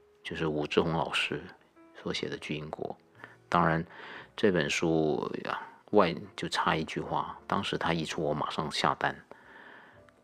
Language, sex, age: Chinese, male, 50-69